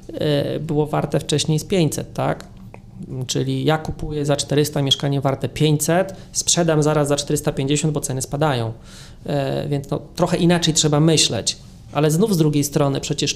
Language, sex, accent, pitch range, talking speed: Polish, male, native, 135-155 Hz, 140 wpm